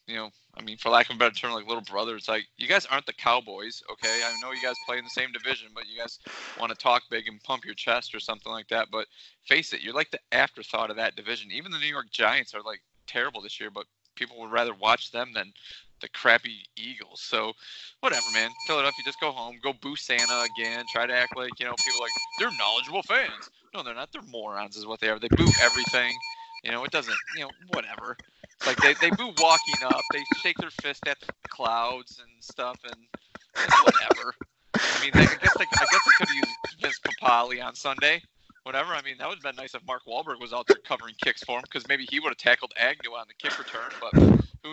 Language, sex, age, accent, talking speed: English, male, 20-39, American, 245 wpm